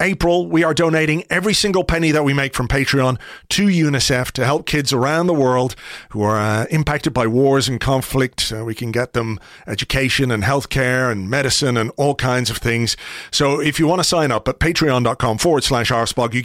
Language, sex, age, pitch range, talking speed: English, male, 40-59, 120-165 Hz, 205 wpm